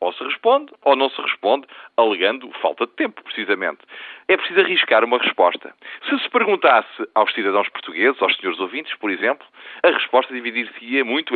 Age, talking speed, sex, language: 40-59, 170 wpm, male, Portuguese